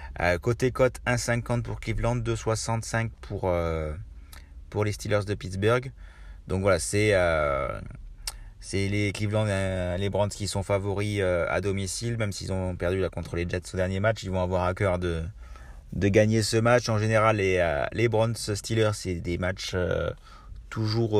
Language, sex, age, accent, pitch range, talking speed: French, male, 30-49, French, 85-105 Hz, 175 wpm